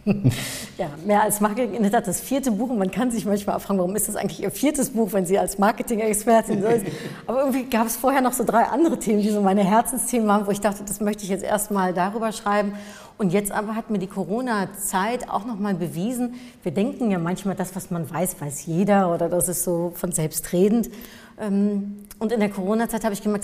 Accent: German